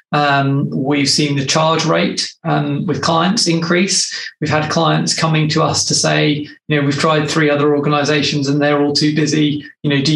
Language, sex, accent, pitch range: English, male, British, 150-170 Hz